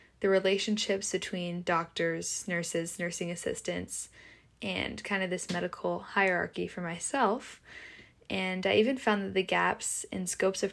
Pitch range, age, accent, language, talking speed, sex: 175-205 Hz, 10-29, American, English, 140 wpm, female